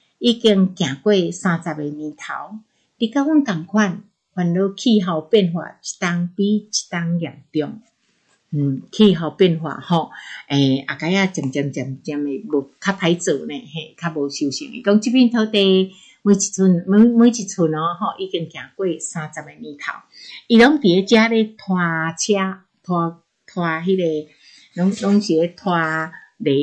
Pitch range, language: 155-205 Hz, Chinese